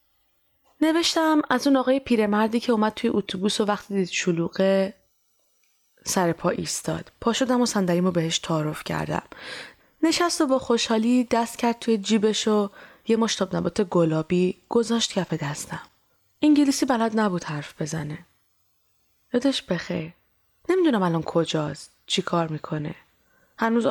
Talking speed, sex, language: 135 wpm, female, Persian